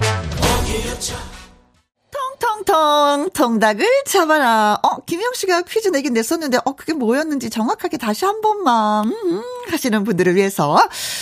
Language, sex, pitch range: Korean, female, 195-325 Hz